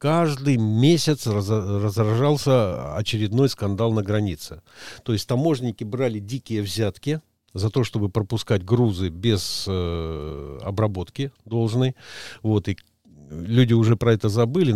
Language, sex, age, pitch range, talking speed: Russian, male, 50-69, 95-120 Hz, 120 wpm